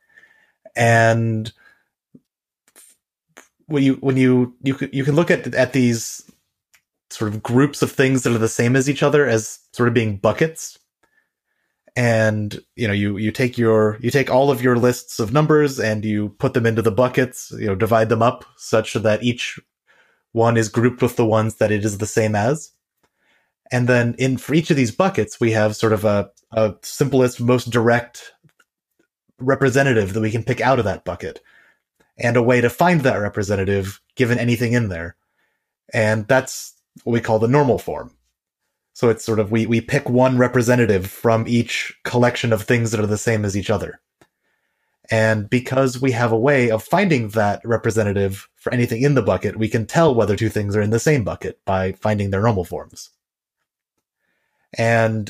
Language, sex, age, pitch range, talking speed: English, male, 30-49, 110-130 Hz, 185 wpm